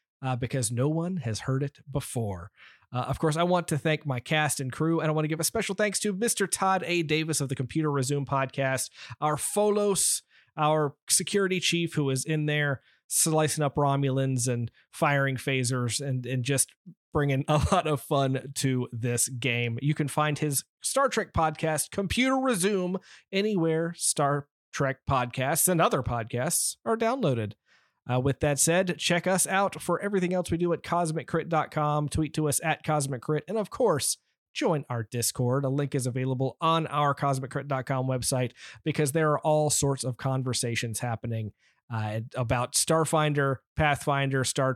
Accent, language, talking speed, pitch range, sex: American, English, 170 wpm, 130-165 Hz, male